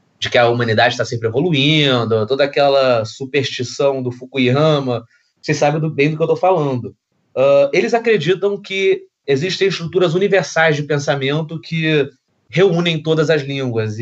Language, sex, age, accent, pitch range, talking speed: Portuguese, male, 20-39, Brazilian, 130-165 Hz, 140 wpm